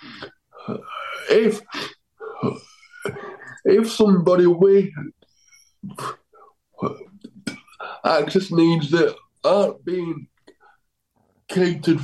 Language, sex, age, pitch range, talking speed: English, male, 60-79, 160-250 Hz, 50 wpm